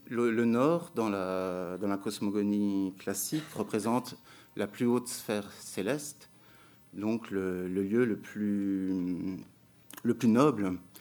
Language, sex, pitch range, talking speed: French, male, 100-120 Hz, 120 wpm